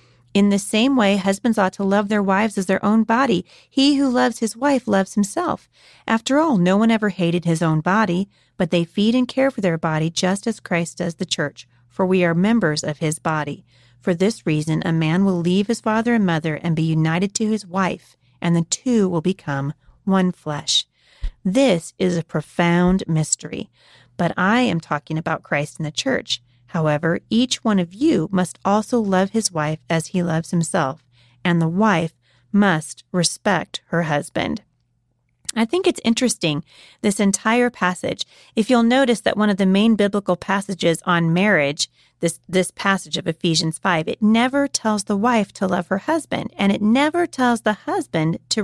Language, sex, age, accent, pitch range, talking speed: English, female, 40-59, American, 165-220 Hz, 185 wpm